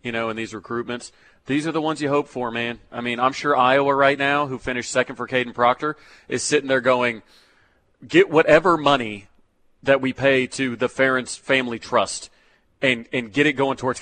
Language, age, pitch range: English, 30-49, 115-135 Hz